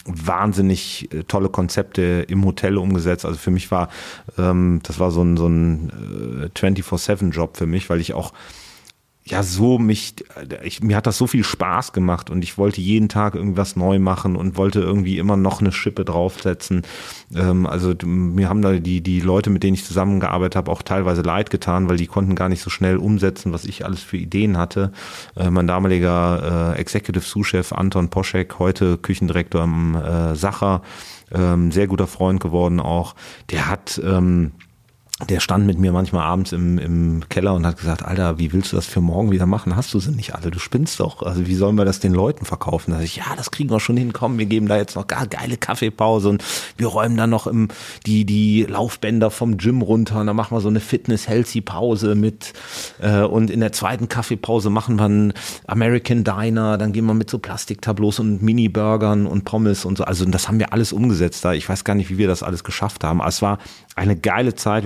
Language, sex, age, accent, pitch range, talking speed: German, male, 30-49, German, 90-105 Hz, 205 wpm